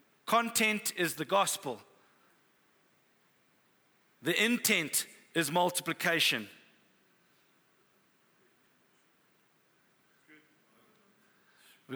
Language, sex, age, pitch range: English, male, 50-69, 160-200 Hz